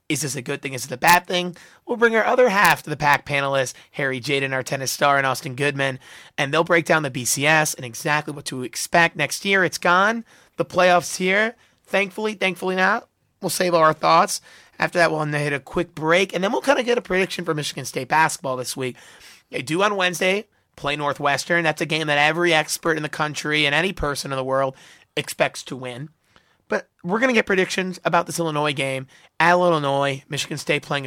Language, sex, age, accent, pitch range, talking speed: English, male, 30-49, American, 140-175 Hz, 220 wpm